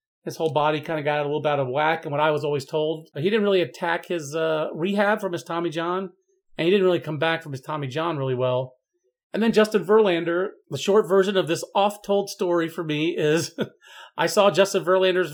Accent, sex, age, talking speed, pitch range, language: American, male, 40-59, 230 wpm, 150-185 Hz, English